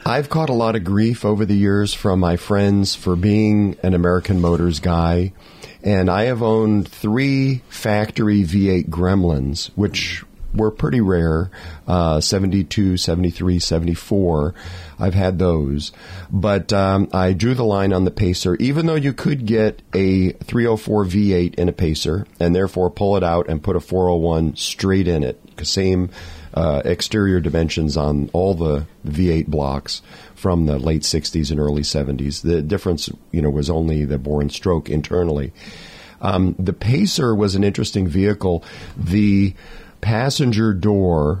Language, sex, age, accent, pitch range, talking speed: English, male, 40-59, American, 85-105 Hz, 155 wpm